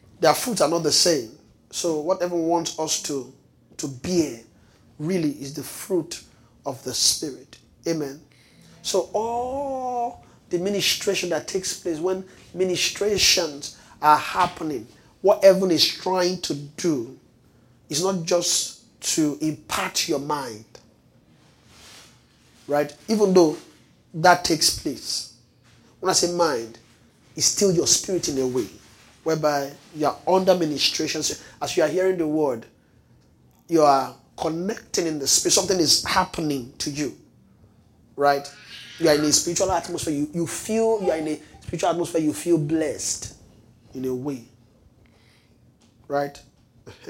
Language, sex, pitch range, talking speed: English, male, 130-175 Hz, 140 wpm